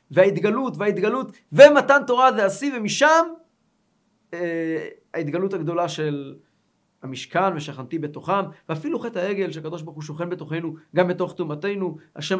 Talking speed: 120 wpm